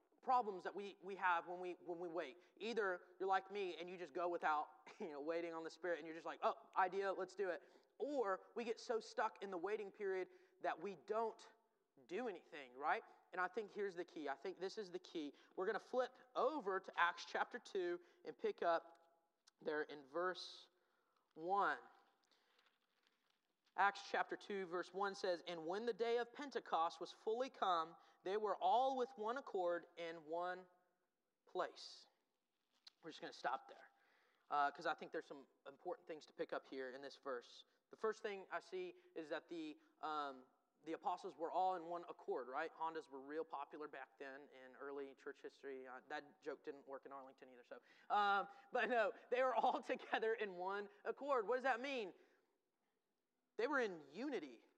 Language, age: English, 30-49